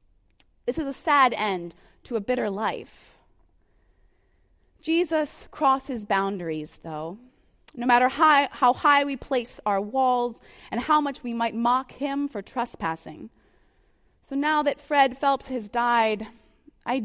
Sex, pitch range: female, 215-280 Hz